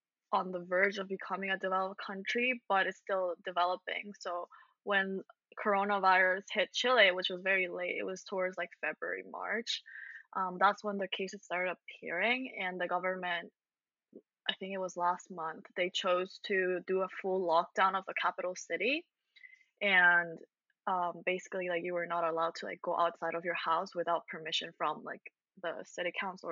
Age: 20-39